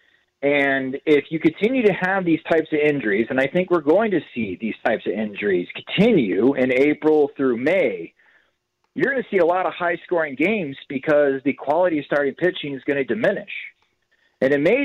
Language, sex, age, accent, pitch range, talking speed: English, male, 40-59, American, 135-160 Hz, 200 wpm